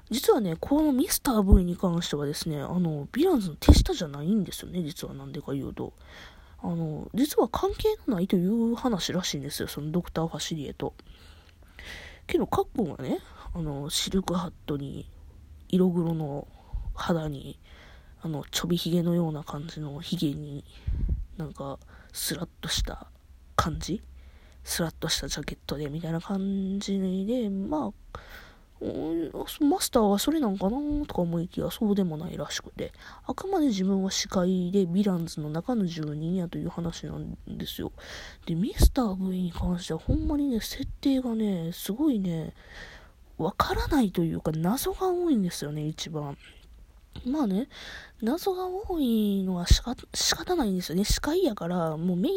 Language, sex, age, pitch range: Japanese, female, 20-39, 150-220 Hz